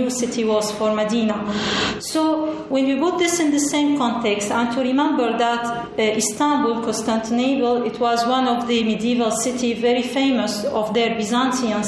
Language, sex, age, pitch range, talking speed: Turkish, female, 40-59, 225-255 Hz, 155 wpm